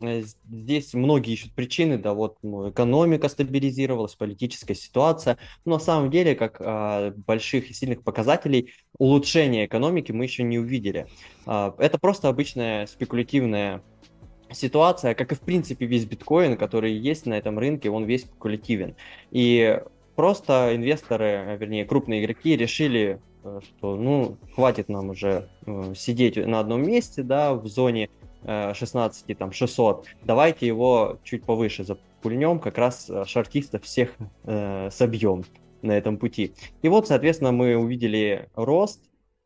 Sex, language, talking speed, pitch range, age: male, Russian, 135 wpm, 105-140 Hz, 20-39